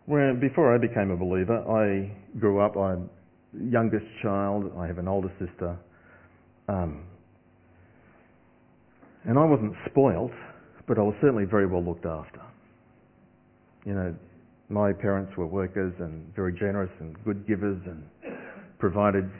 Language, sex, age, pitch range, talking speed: English, male, 40-59, 90-120 Hz, 140 wpm